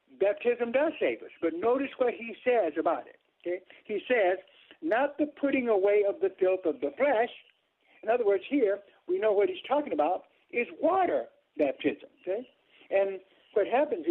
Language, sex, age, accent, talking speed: English, male, 60-79, American, 175 wpm